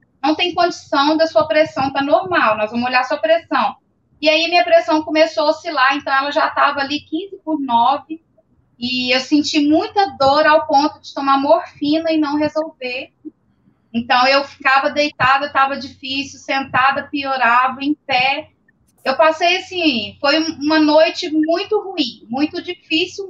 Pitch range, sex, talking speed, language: 275-320 Hz, female, 160 wpm, Portuguese